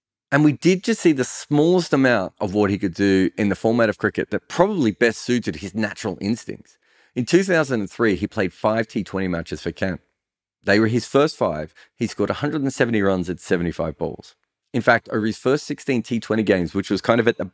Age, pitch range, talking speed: 30-49, 95-125 Hz, 205 wpm